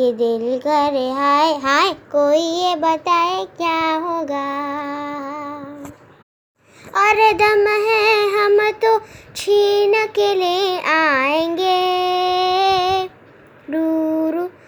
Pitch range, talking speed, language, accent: 280-375 Hz, 80 wpm, Hindi, native